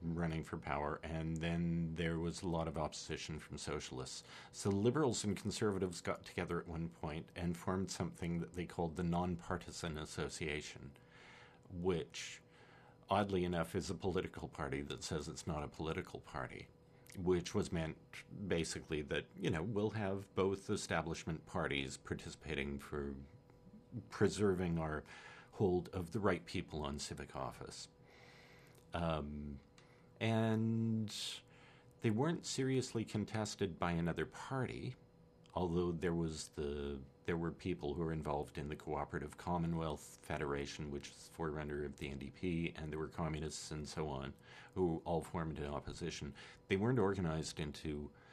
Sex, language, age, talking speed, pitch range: male, English, 50-69, 145 wpm, 75-90 Hz